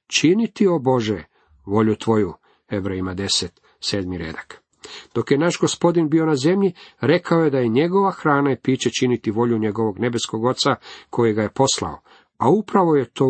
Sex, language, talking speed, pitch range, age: male, Croatian, 175 wpm, 105-140 Hz, 50-69